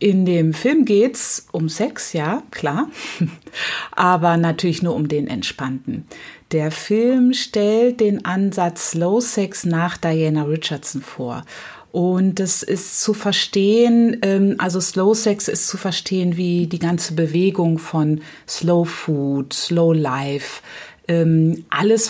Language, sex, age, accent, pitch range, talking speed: German, female, 30-49, German, 160-200 Hz, 125 wpm